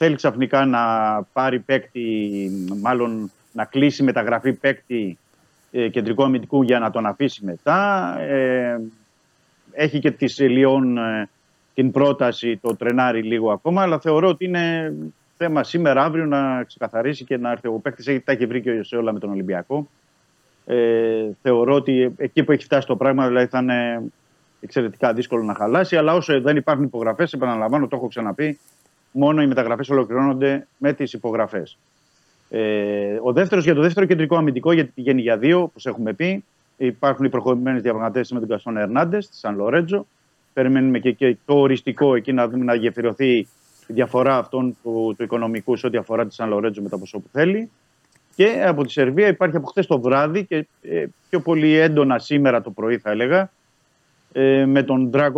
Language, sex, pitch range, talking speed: Greek, male, 120-150 Hz, 170 wpm